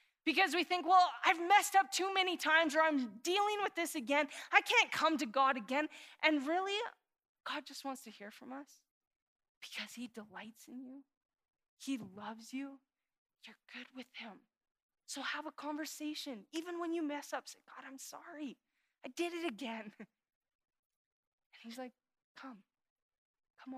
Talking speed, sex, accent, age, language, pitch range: 165 wpm, female, American, 20-39, English, 225-295 Hz